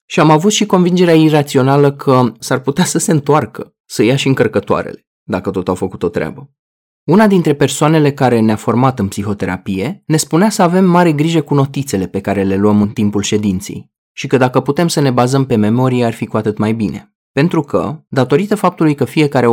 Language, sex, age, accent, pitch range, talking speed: Romanian, male, 20-39, native, 105-155 Hz, 205 wpm